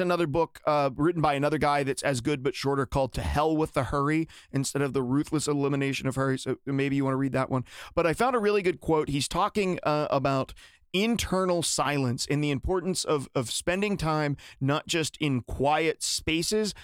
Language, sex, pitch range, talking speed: English, male, 140-175 Hz, 205 wpm